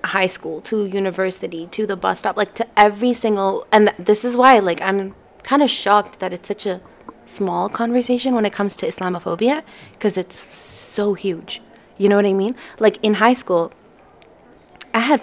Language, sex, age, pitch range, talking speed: English, female, 20-39, 185-230 Hz, 185 wpm